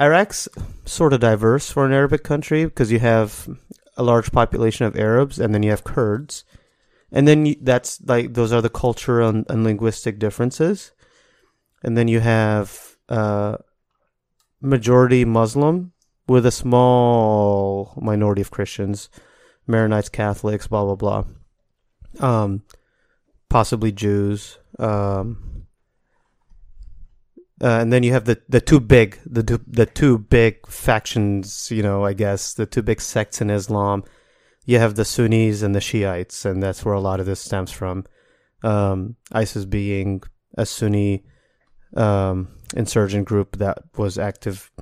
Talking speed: 145 wpm